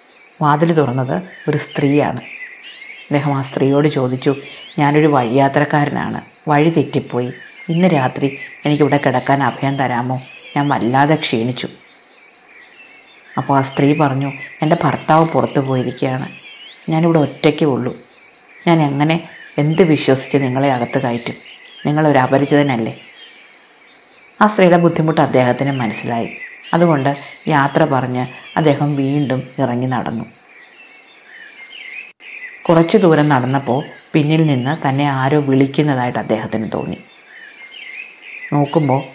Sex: female